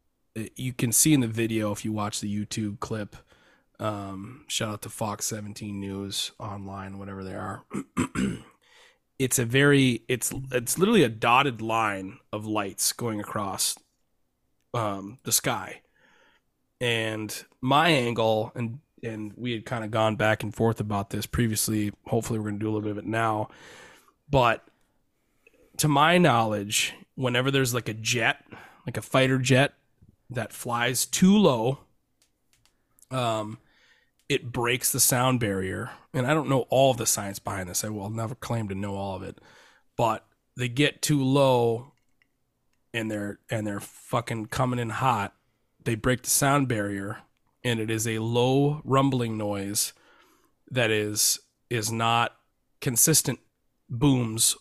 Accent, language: American, English